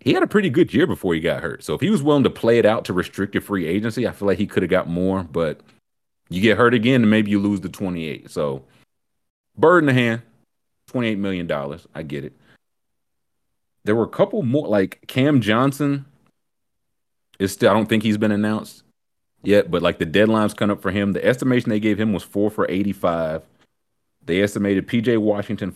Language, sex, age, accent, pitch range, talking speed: English, male, 30-49, American, 95-115 Hz, 205 wpm